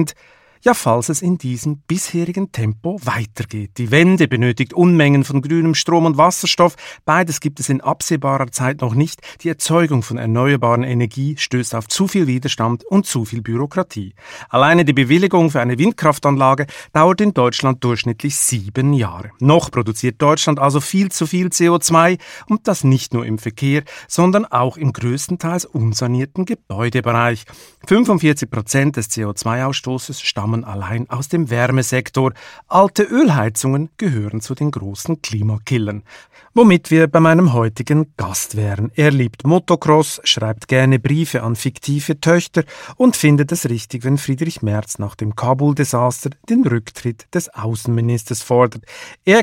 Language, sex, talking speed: German, male, 145 wpm